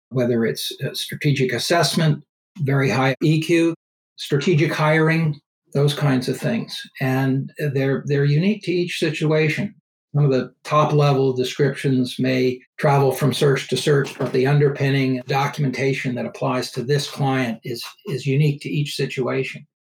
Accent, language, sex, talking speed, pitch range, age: American, English, male, 140 wpm, 130-155 Hz, 60-79